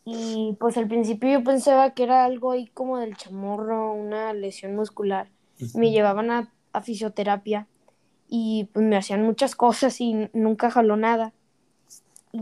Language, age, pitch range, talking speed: Spanish, 10-29, 205-235 Hz, 155 wpm